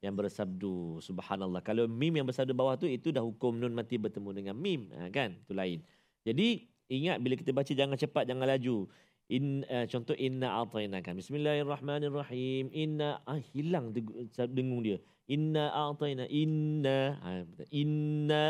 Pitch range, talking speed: 115-155 Hz, 145 wpm